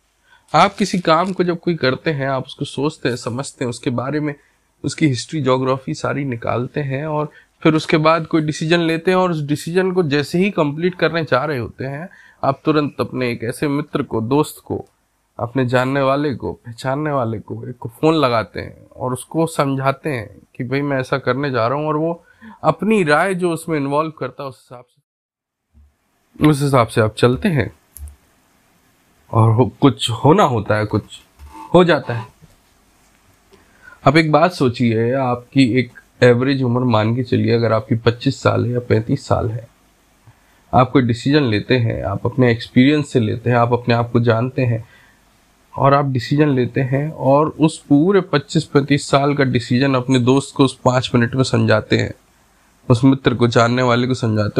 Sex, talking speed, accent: male, 185 wpm, native